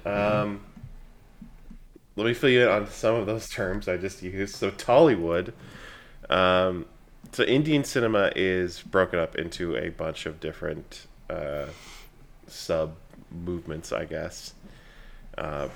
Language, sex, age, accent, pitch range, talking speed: English, male, 20-39, American, 80-105 Hz, 130 wpm